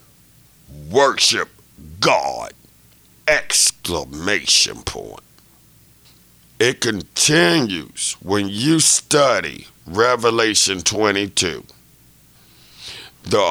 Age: 50-69